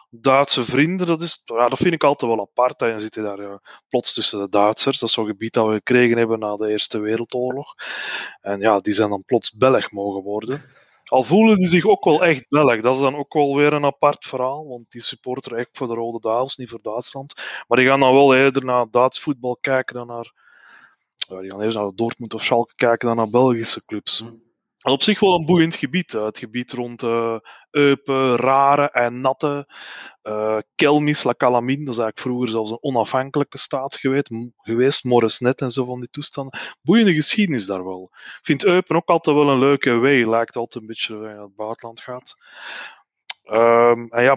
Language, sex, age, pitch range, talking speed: Dutch, male, 20-39, 115-140 Hz, 210 wpm